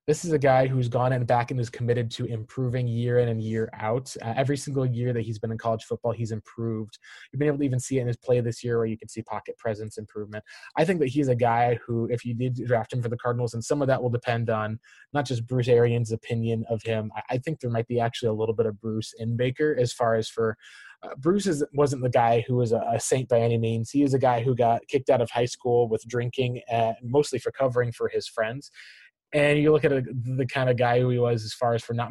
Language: English